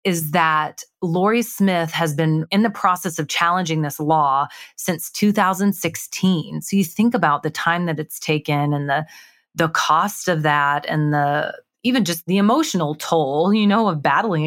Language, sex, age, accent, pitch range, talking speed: English, female, 30-49, American, 150-185 Hz, 170 wpm